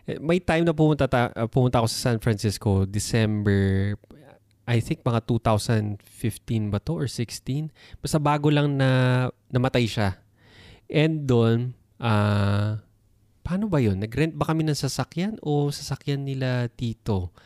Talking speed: 140 wpm